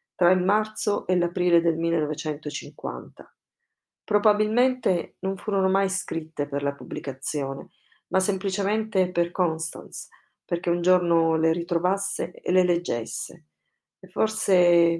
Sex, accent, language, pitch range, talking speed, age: female, native, Italian, 155-190 Hz, 115 wpm, 40-59